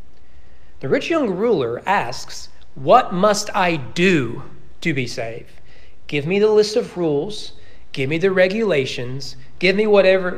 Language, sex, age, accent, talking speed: English, male, 40-59, American, 145 wpm